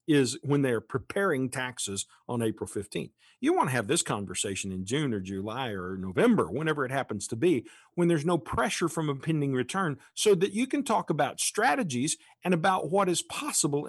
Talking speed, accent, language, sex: 195 wpm, American, English, male